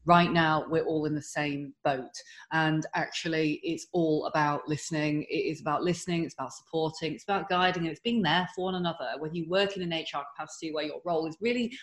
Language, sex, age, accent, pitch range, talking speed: English, female, 30-49, British, 150-175 Hz, 220 wpm